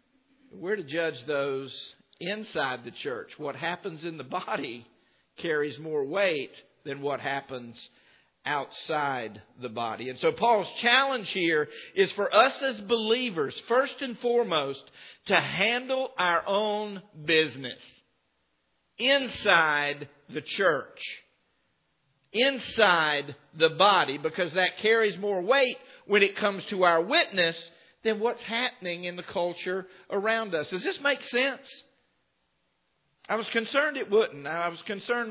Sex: male